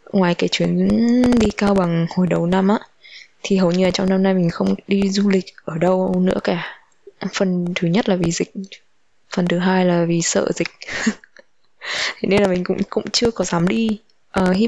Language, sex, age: Vietnamese, female, 20-39